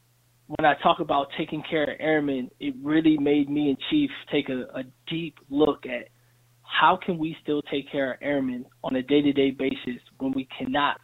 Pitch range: 135-160 Hz